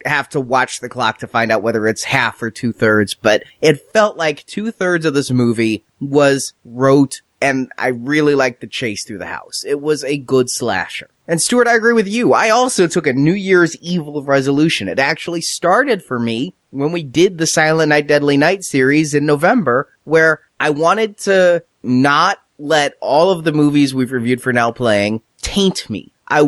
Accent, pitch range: American, 130-180 Hz